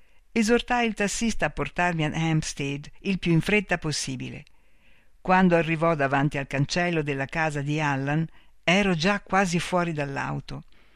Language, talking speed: Italian, 140 wpm